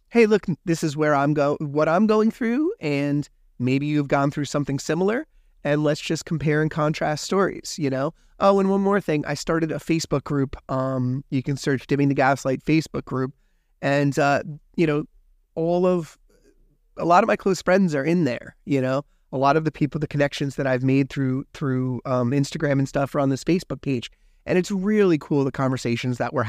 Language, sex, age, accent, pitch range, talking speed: English, male, 30-49, American, 125-155 Hz, 210 wpm